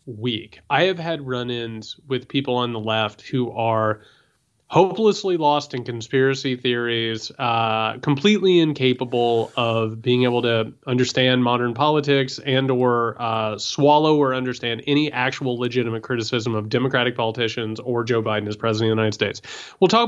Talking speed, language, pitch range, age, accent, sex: 150 wpm, English, 115-150 Hz, 30-49, American, male